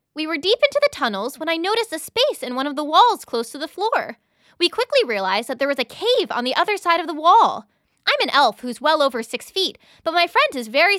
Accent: American